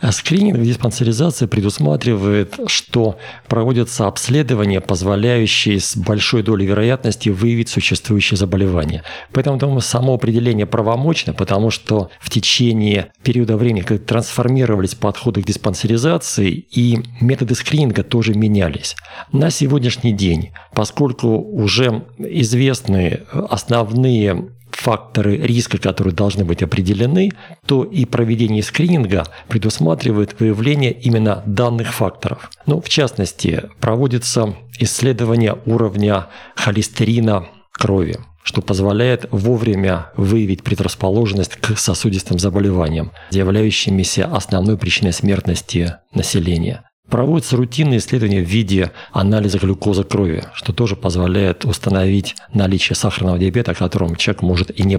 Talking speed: 110 wpm